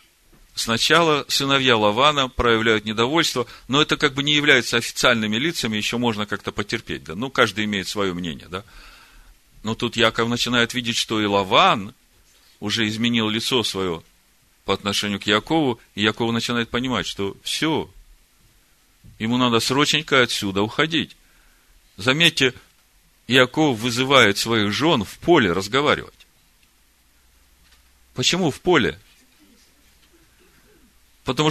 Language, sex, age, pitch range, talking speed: Russian, male, 40-59, 105-135 Hz, 120 wpm